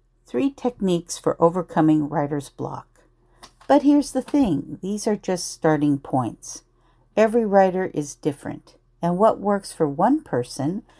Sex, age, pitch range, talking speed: female, 50-69, 140-185 Hz, 135 wpm